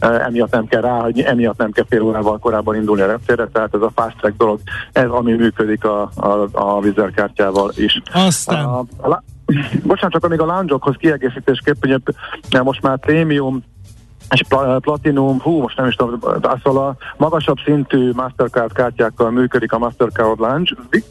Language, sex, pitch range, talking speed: Hungarian, male, 115-135 Hz, 155 wpm